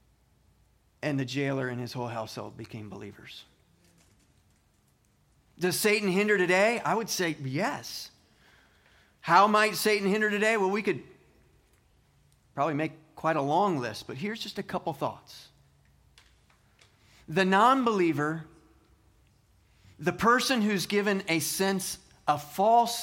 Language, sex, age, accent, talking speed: English, male, 30-49, American, 120 wpm